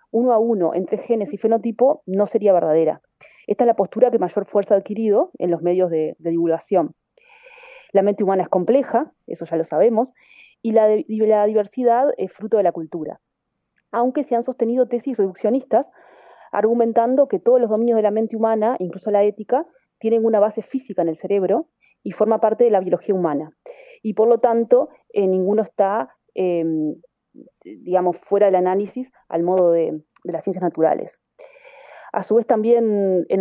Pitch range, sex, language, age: 185-240 Hz, female, English, 20-39